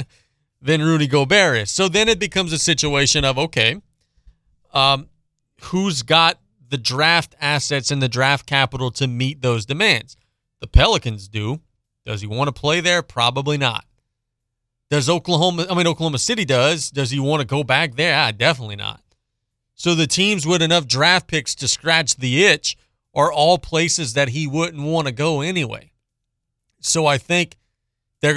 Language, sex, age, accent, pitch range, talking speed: English, male, 30-49, American, 115-155 Hz, 165 wpm